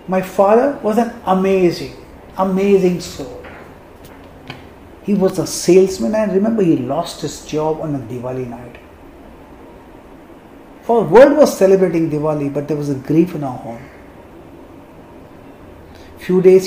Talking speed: 130 wpm